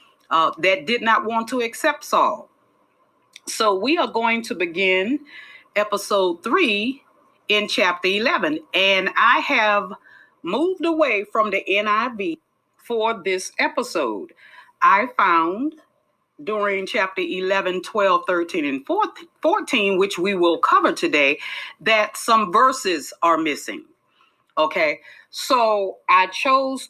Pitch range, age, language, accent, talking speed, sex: 180-265 Hz, 40-59, English, American, 120 wpm, female